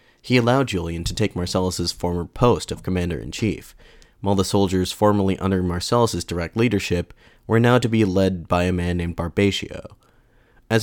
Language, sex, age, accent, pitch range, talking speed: English, male, 30-49, American, 90-110 Hz, 160 wpm